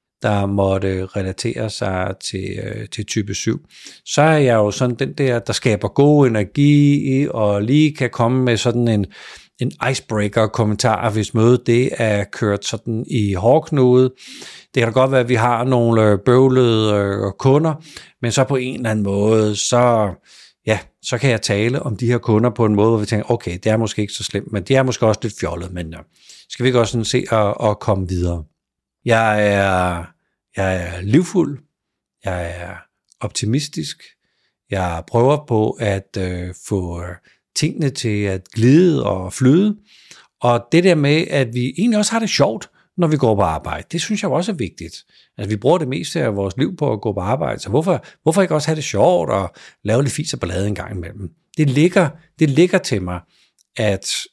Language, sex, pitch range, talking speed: Danish, male, 100-135 Hz, 190 wpm